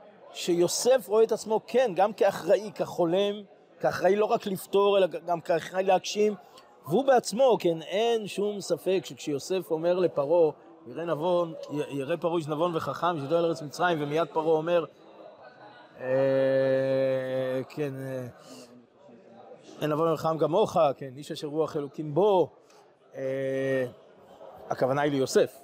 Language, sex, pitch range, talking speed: Hebrew, male, 150-200 Hz, 130 wpm